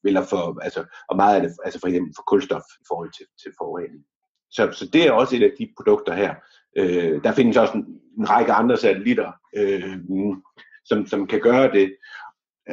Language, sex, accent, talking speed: Danish, male, native, 205 wpm